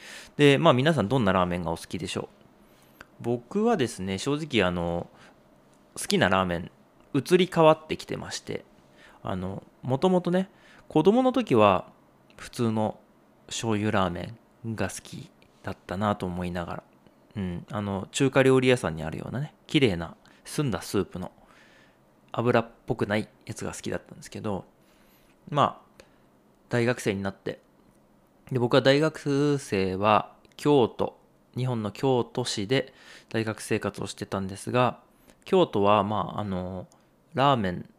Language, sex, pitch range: Japanese, male, 95-125 Hz